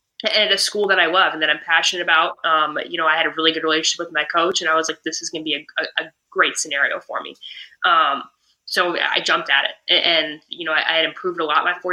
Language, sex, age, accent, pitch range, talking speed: English, female, 20-39, American, 165-205 Hz, 285 wpm